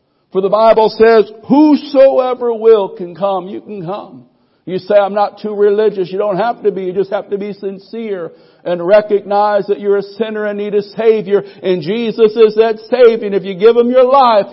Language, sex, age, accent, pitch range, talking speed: English, male, 60-79, American, 195-255 Hz, 205 wpm